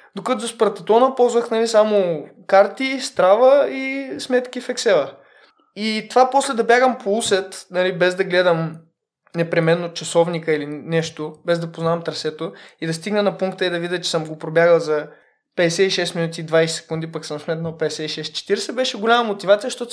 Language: Bulgarian